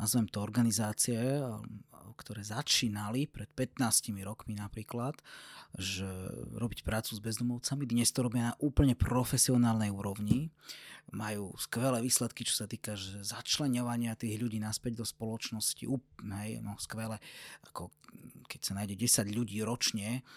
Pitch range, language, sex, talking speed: 110-130 Hz, Slovak, male, 125 wpm